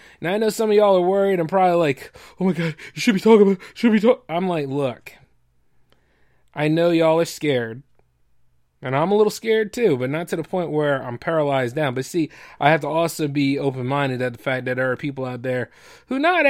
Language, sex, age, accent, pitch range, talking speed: English, male, 20-39, American, 130-175 Hz, 235 wpm